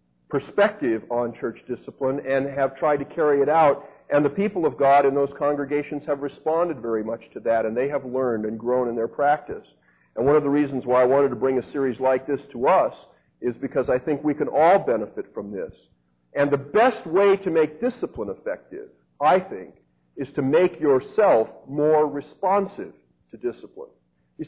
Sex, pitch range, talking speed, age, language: male, 125-160 Hz, 195 wpm, 50-69, English